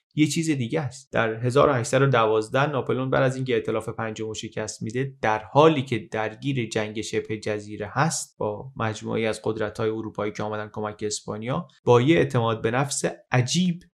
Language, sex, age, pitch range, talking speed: Persian, male, 30-49, 110-140 Hz, 160 wpm